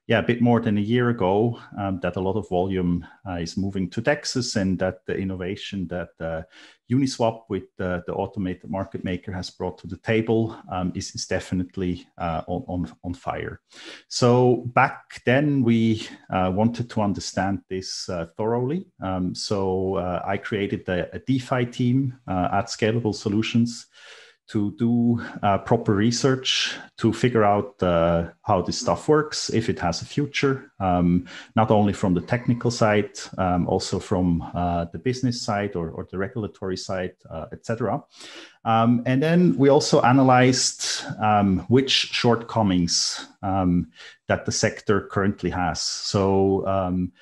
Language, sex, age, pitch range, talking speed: English, male, 30-49, 90-120 Hz, 160 wpm